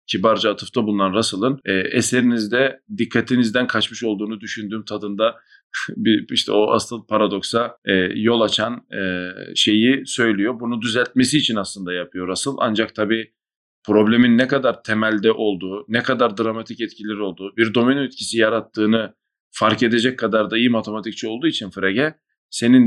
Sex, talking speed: male, 140 wpm